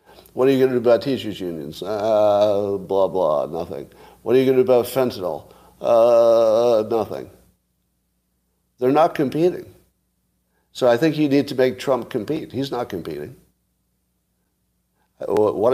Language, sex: English, male